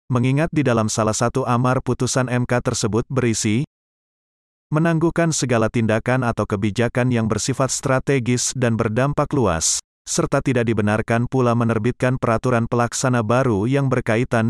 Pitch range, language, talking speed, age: 115-130 Hz, Indonesian, 130 wpm, 30-49